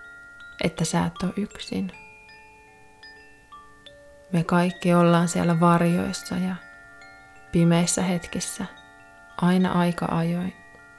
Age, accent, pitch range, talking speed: 20-39, native, 155-205 Hz, 85 wpm